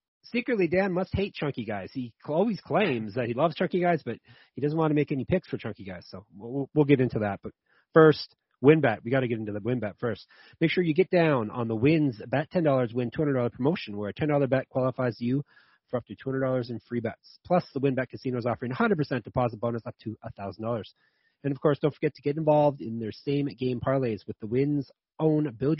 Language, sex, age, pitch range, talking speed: English, male, 30-49, 120-155 Hz, 235 wpm